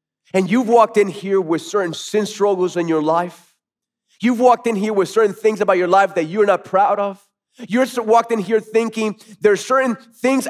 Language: English